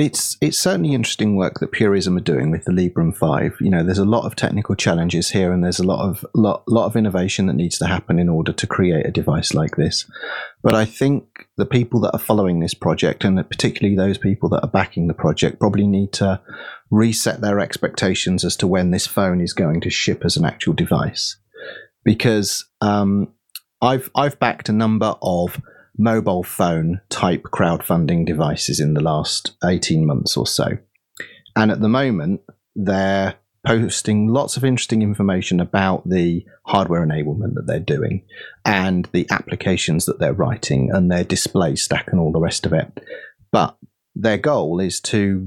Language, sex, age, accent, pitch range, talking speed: English, male, 30-49, British, 90-110 Hz, 185 wpm